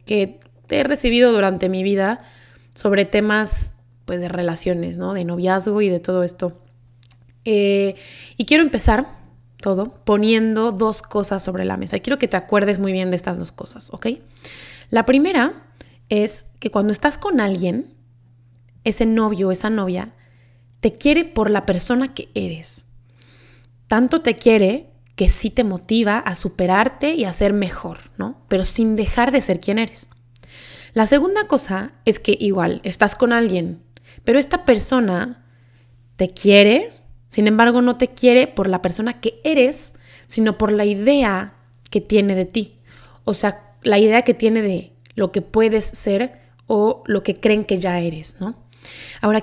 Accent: Mexican